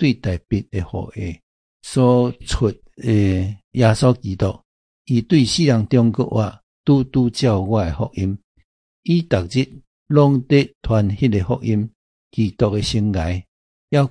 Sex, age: male, 60-79